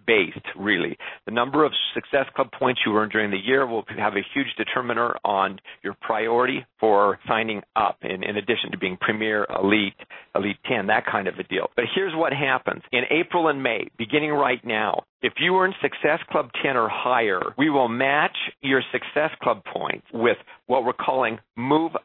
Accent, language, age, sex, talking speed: American, English, 50-69, male, 190 wpm